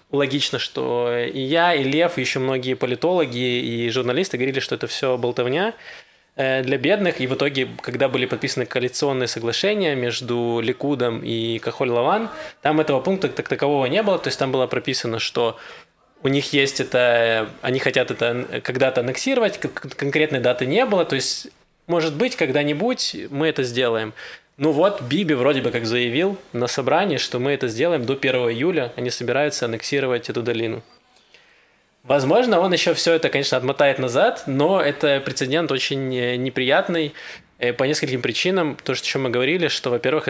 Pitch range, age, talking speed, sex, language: 125-150 Hz, 20-39, 160 wpm, male, Russian